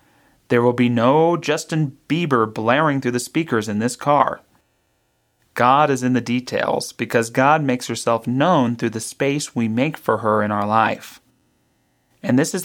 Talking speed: 170 wpm